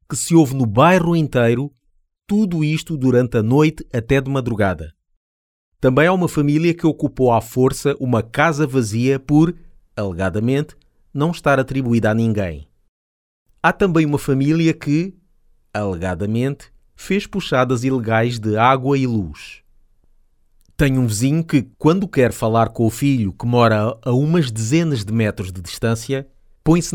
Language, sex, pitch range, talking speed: Portuguese, male, 110-150 Hz, 145 wpm